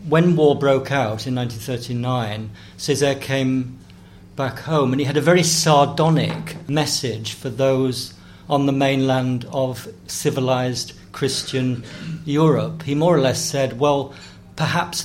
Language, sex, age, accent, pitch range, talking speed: English, male, 50-69, British, 125-160 Hz, 130 wpm